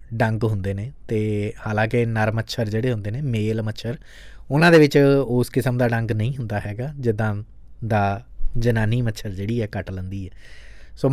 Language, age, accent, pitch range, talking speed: English, 20-39, Indian, 105-135 Hz, 175 wpm